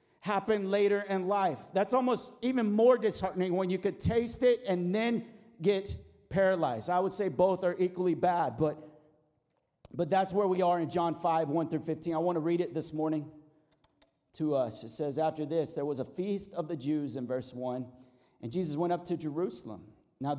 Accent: American